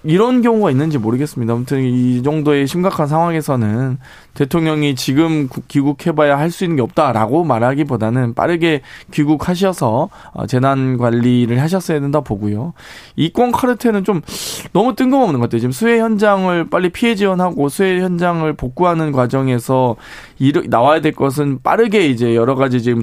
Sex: male